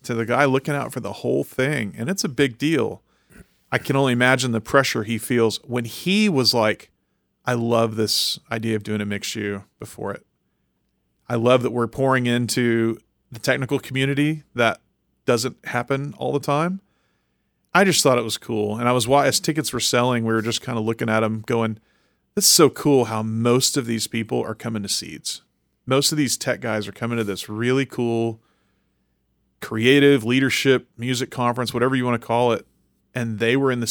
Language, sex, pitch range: English, male, 110-130 Hz